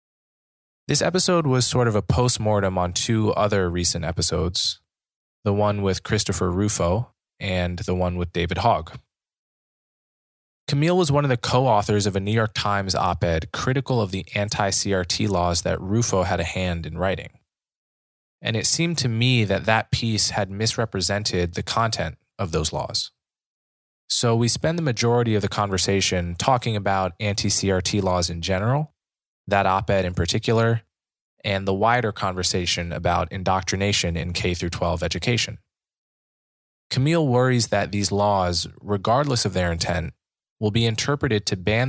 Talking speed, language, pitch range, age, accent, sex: 150 wpm, English, 90-115 Hz, 20-39, American, male